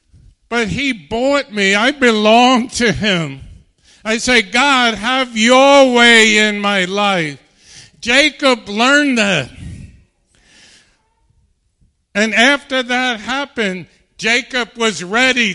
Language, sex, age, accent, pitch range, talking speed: English, male, 50-69, American, 215-255 Hz, 105 wpm